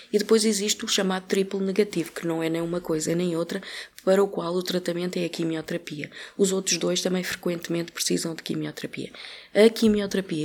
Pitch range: 165-195 Hz